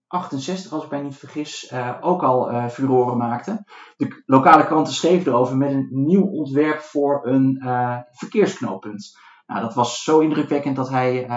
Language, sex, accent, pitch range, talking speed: Dutch, male, Dutch, 125-175 Hz, 165 wpm